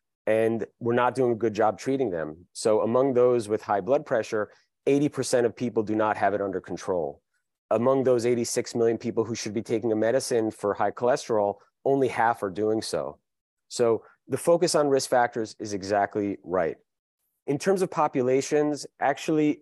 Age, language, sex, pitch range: 30-49, English, male, 110-130 Hz